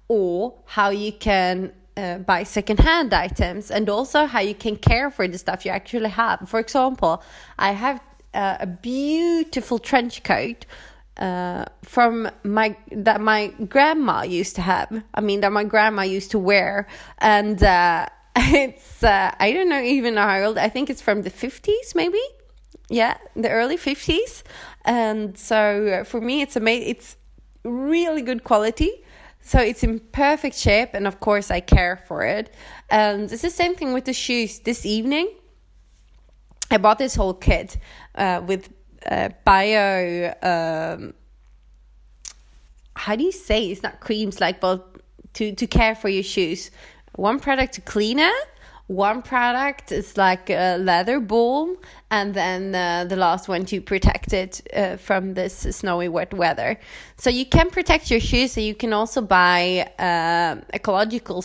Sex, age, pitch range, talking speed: female, 20-39, 190-245 Hz, 160 wpm